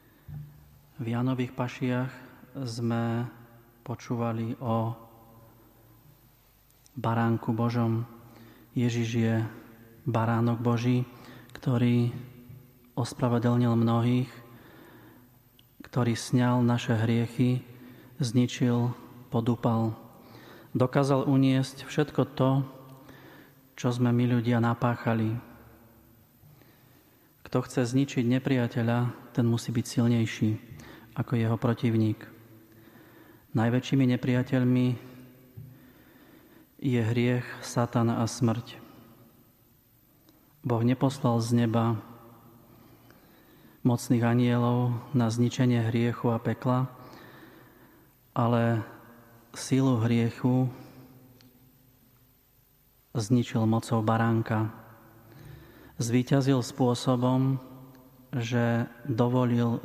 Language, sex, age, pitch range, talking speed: Slovak, male, 40-59, 115-125 Hz, 70 wpm